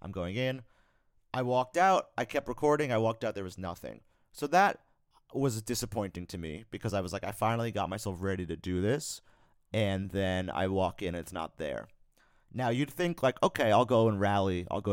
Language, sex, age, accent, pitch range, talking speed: English, male, 30-49, American, 95-120 Hz, 215 wpm